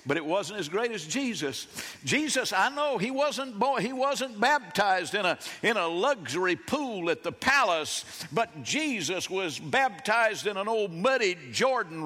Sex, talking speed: male, 165 wpm